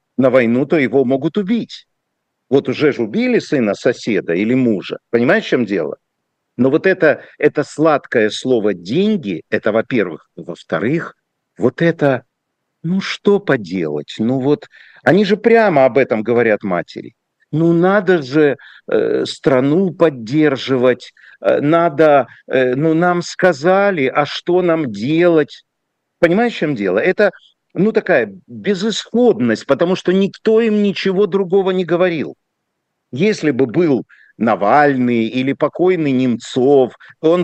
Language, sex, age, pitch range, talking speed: Russian, male, 50-69, 135-190 Hz, 135 wpm